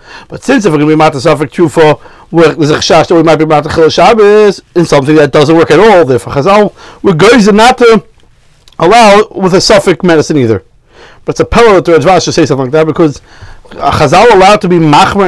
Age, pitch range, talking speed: 30-49, 155-205 Hz, 235 wpm